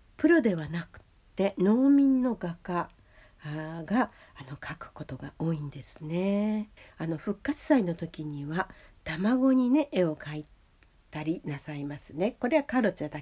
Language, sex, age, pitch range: Japanese, female, 60-79, 150-205 Hz